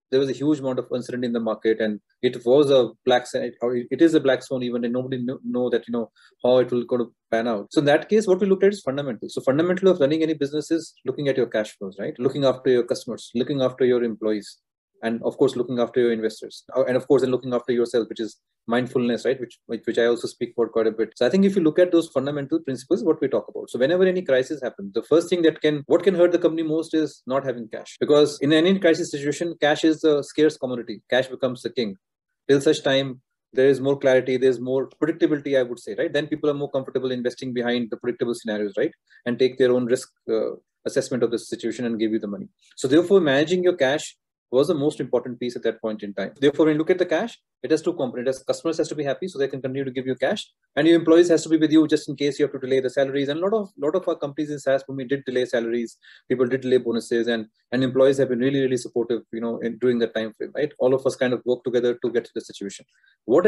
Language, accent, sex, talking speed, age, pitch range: English, Indian, male, 270 wpm, 30-49, 120-155 Hz